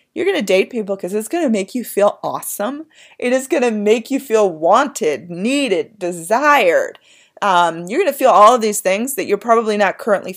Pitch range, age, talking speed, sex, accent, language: 190-265 Hz, 30-49, 215 wpm, female, American, English